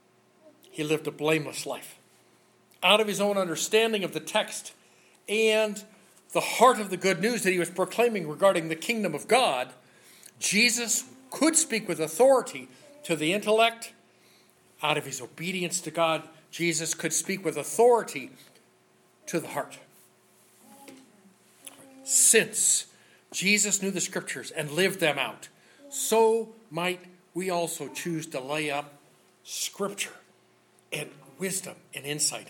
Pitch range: 160-215 Hz